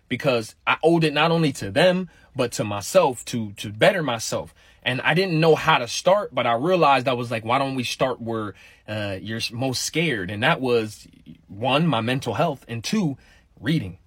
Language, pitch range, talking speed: English, 105-140 Hz, 200 wpm